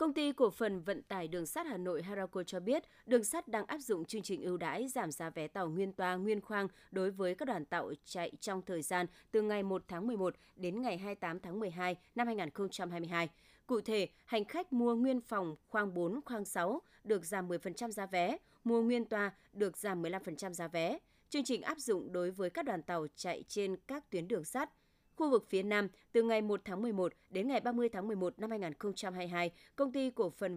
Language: Vietnamese